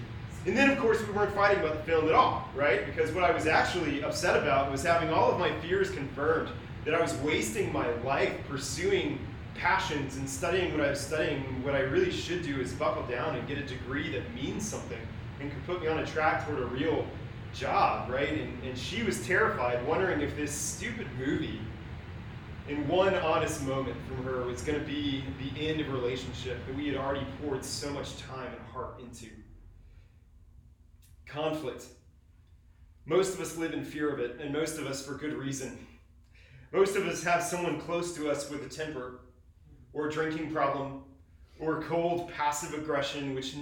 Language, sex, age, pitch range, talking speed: English, male, 30-49, 120-155 Hz, 195 wpm